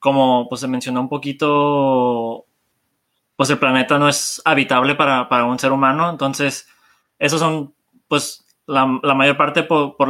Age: 20-39